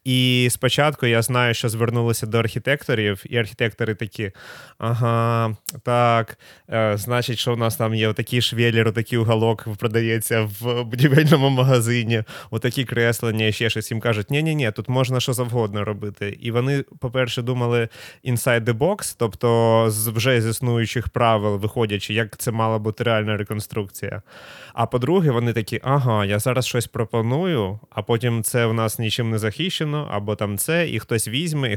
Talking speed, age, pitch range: 155 wpm, 20-39, 110-125 Hz